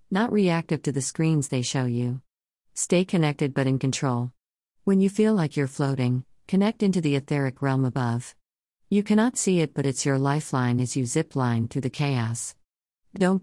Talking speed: 185 wpm